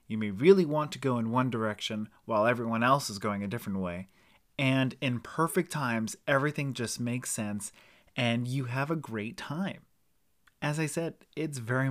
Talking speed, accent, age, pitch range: 180 wpm, American, 30-49, 110-140 Hz